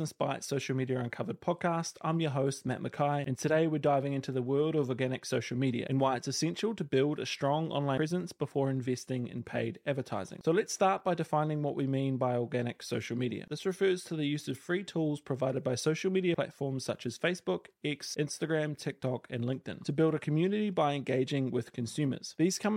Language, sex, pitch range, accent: English, male, 130-165 Hz, Australian